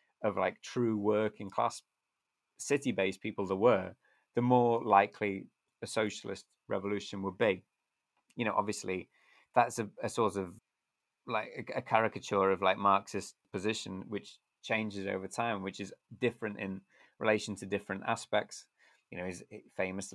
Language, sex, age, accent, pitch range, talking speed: English, male, 20-39, British, 100-120 Hz, 145 wpm